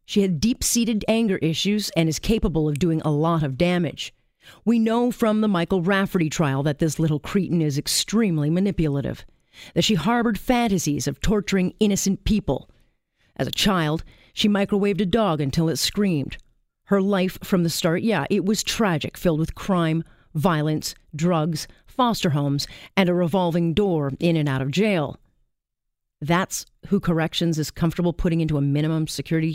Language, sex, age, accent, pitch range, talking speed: English, female, 40-59, American, 155-205 Hz, 165 wpm